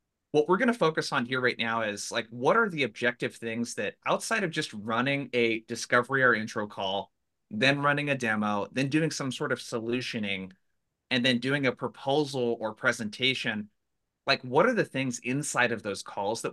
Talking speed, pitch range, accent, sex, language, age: 190 wpm, 110-140 Hz, American, male, English, 30-49